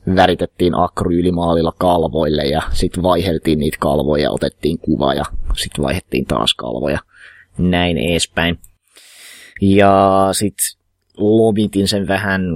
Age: 20-39